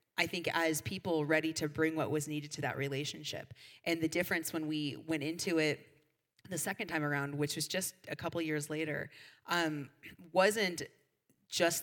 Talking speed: 185 wpm